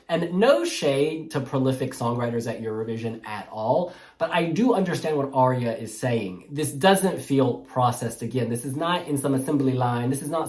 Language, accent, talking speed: English, American, 190 wpm